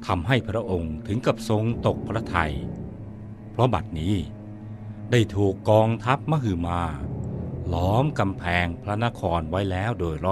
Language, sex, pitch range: Thai, male, 95-115 Hz